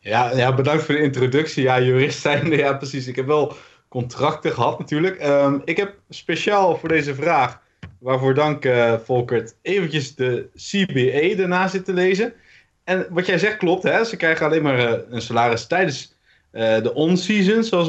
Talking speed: 170 wpm